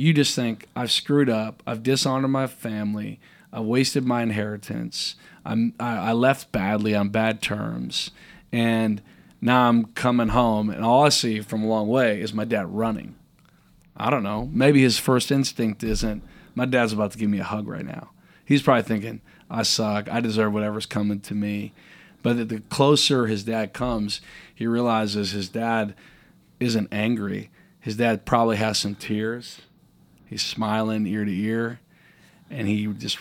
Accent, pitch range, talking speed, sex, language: American, 105-125 Hz, 170 wpm, male, English